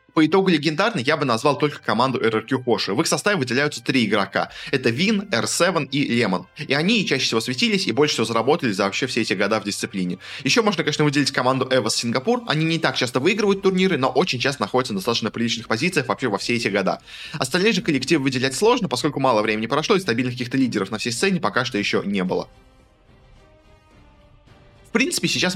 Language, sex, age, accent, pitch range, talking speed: Russian, male, 20-39, native, 110-165 Hz, 205 wpm